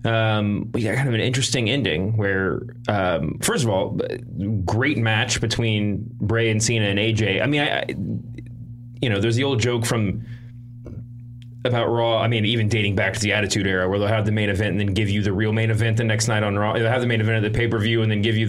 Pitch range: 105-120 Hz